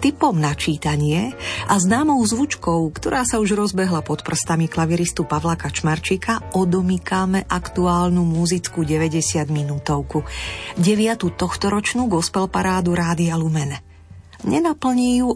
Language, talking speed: Slovak, 100 wpm